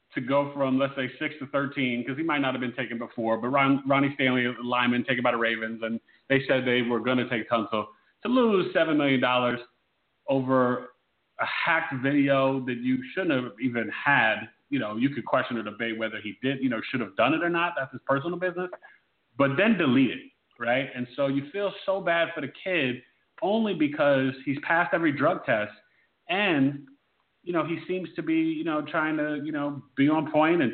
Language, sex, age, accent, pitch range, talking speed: English, male, 30-49, American, 120-150 Hz, 215 wpm